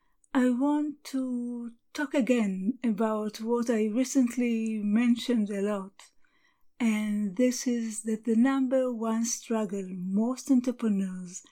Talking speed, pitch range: 115 wpm, 215-260 Hz